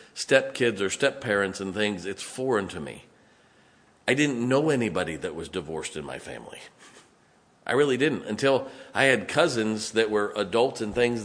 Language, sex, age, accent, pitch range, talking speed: English, male, 50-69, American, 105-125 Hz, 170 wpm